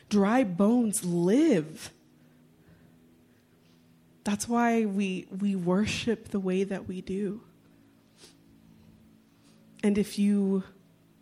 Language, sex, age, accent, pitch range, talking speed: English, female, 20-39, American, 170-215 Hz, 85 wpm